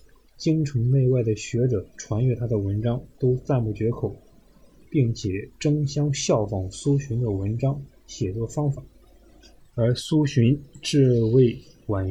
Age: 20-39